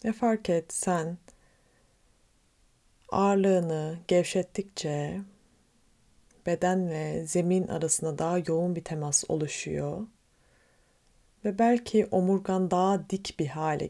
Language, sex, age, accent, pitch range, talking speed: Turkish, female, 30-49, native, 165-205 Hz, 95 wpm